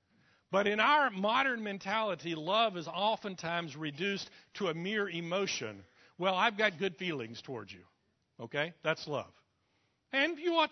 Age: 60-79